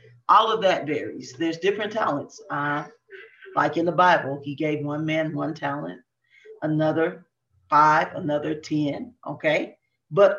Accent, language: American, English